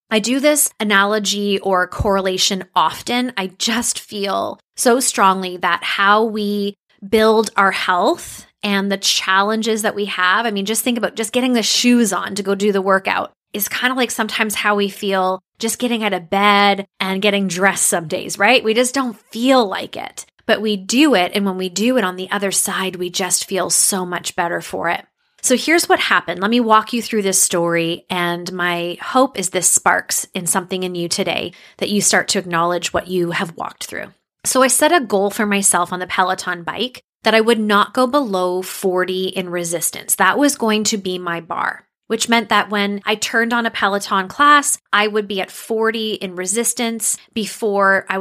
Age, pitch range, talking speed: 20-39, 185-225 Hz, 205 wpm